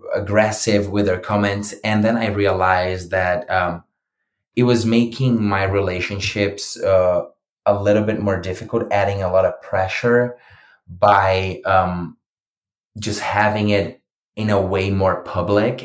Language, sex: English, male